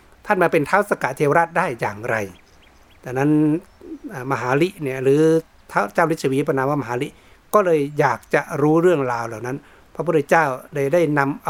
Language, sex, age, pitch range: Thai, male, 60-79, 120-160 Hz